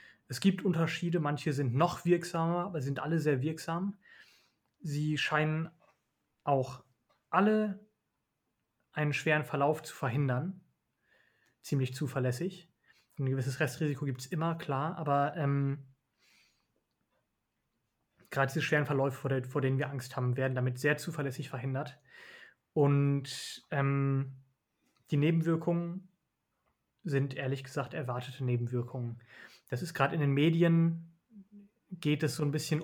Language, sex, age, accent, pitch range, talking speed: German, male, 30-49, German, 135-165 Hz, 120 wpm